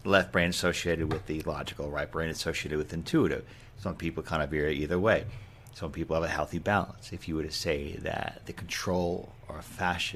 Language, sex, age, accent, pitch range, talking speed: English, male, 40-59, American, 80-105 Hz, 205 wpm